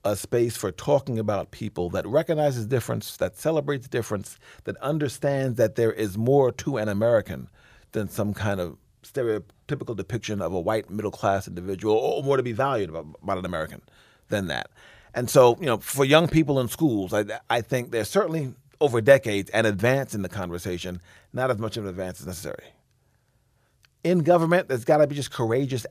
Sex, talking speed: male, 185 wpm